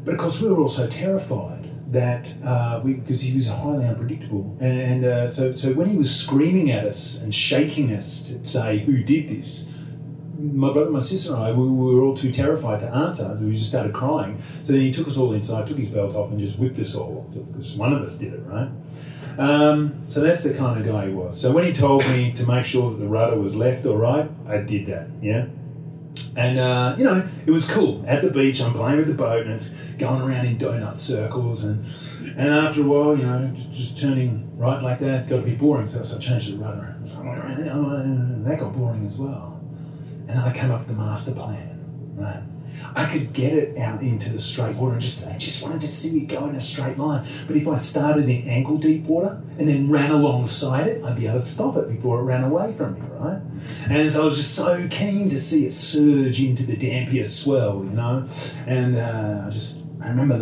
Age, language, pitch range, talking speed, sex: 30-49, English, 125-150 Hz, 235 wpm, male